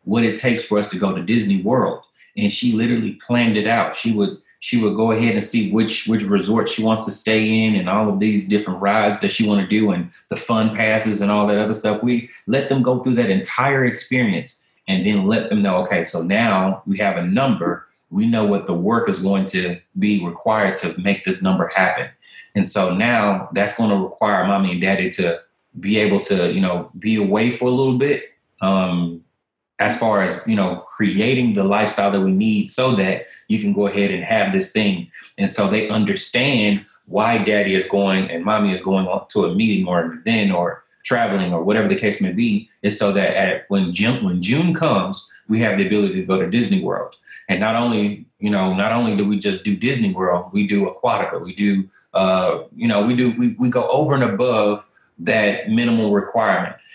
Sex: male